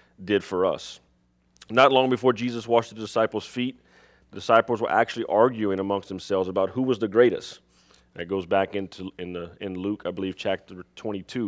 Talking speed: 185 wpm